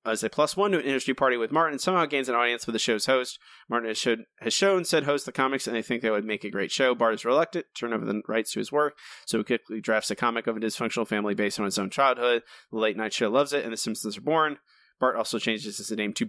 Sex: male